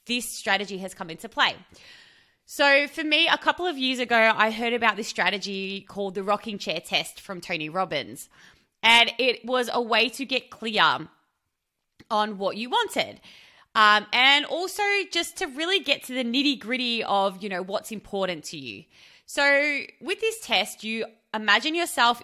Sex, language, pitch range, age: female, English, 195-255 Hz, 20-39